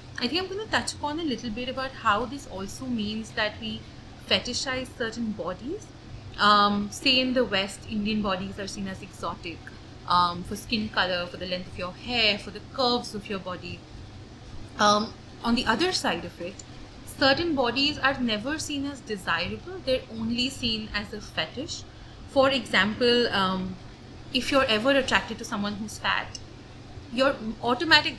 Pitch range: 190-260 Hz